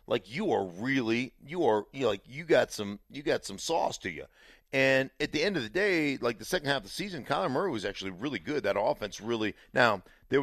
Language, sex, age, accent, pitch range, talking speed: English, male, 50-69, American, 110-140 Hz, 235 wpm